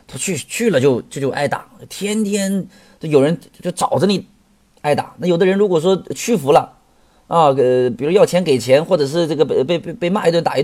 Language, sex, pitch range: Chinese, male, 135-210 Hz